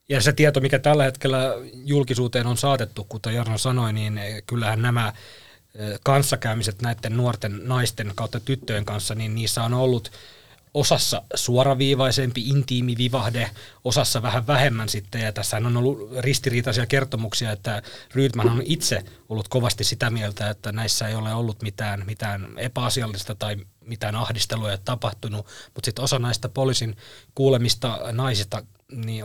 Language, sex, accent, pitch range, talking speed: Finnish, male, native, 105-125 Hz, 140 wpm